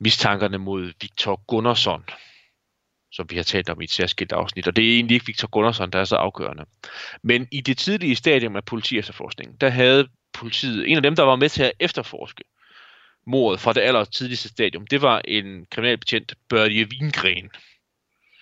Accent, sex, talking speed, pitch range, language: native, male, 175 wpm, 105-135 Hz, Danish